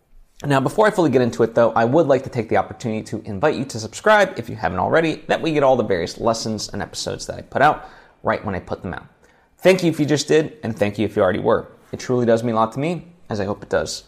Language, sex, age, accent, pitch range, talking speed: English, male, 20-39, American, 110-155 Hz, 300 wpm